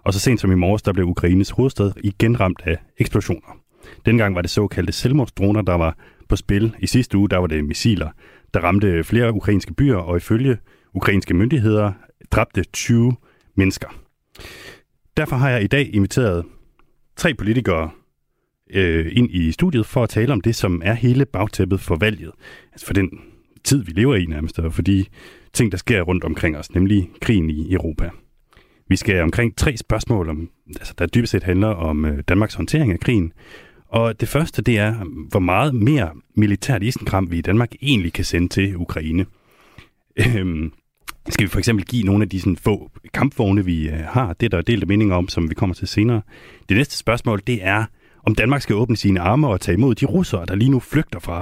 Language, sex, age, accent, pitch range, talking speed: Danish, male, 30-49, native, 90-115 Hz, 195 wpm